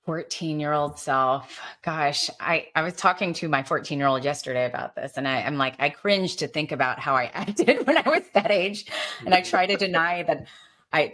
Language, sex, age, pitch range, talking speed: English, female, 30-49, 150-205 Hz, 200 wpm